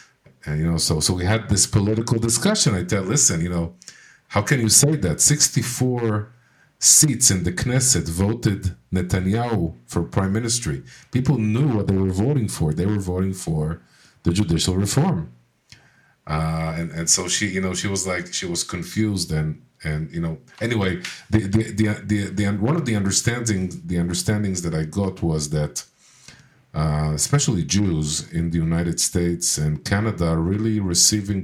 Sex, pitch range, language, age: male, 80-105 Hz, English, 50-69